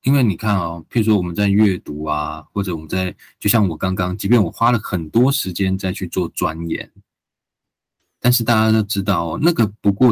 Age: 20-39